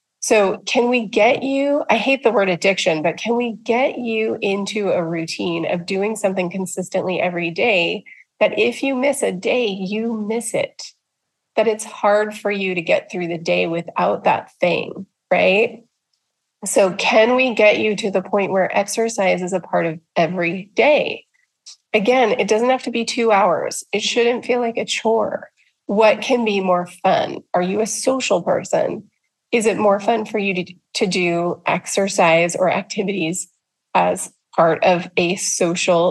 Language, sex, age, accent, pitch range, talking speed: English, female, 30-49, American, 185-235 Hz, 175 wpm